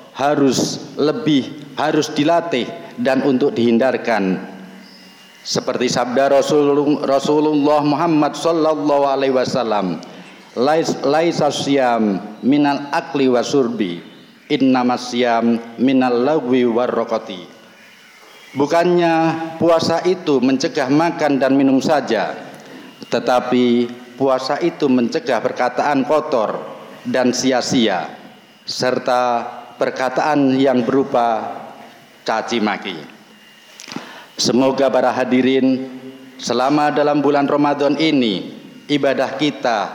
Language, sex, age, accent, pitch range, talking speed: Indonesian, male, 50-69, native, 125-145 Hz, 80 wpm